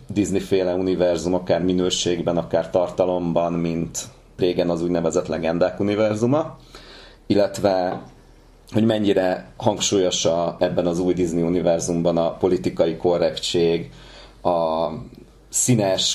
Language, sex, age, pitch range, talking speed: Hungarian, male, 30-49, 85-100 Hz, 100 wpm